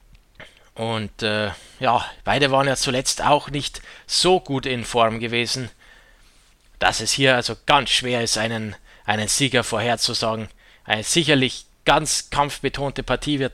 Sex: male